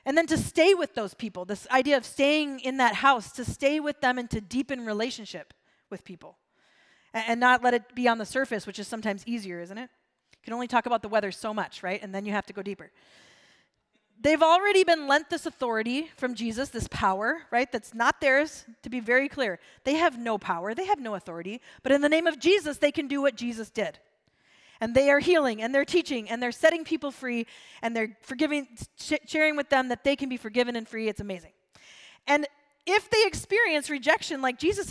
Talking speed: 220 wpm